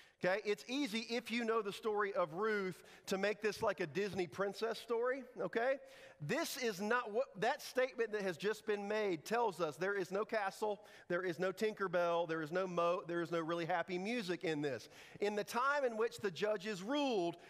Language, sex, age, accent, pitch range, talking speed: English, male, 40-59, American, 165-210 Hz, 200 wpm